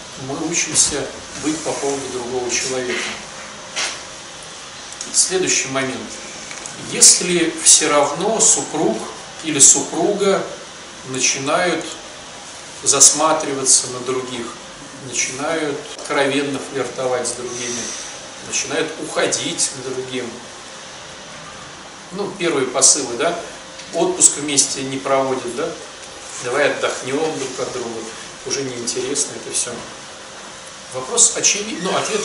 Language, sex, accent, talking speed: Russian, male, native, 95 wpm